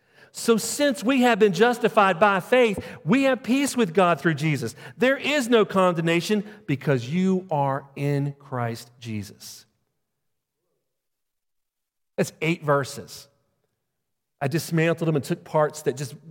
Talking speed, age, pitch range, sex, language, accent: 135 wpm, 40-59, 145-205 Hz, male, English, American